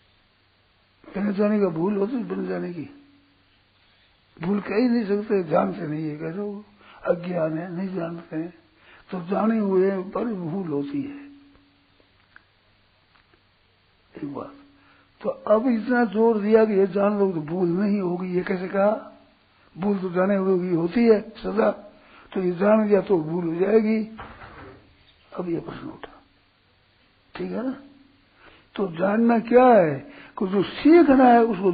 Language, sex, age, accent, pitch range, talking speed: Hindi, male, 60-79, native, 145-215 Hz, 150 wpm